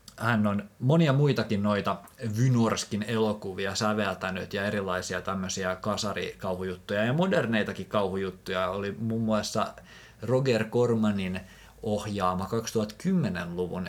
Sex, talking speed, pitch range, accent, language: male, 95 wpm, 95-115 Hz, native, Finnish